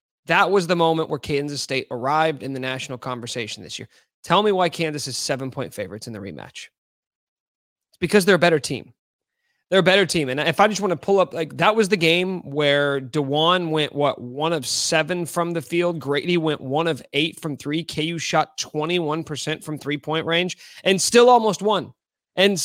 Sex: male